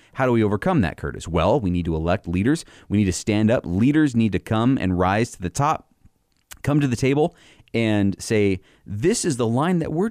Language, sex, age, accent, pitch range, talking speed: English, male, 30-49, American, 95-130 Hz, 225 wpm